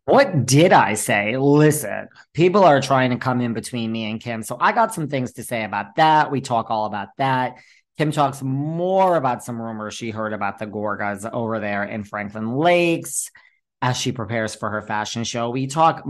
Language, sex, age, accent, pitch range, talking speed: English, male, 40-59, American, 115-155 Hz, 200 wpm